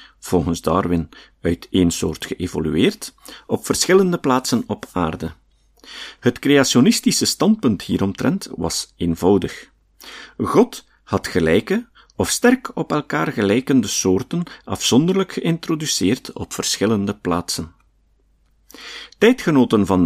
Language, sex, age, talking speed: Dutch, male, 50-69, 100 wpm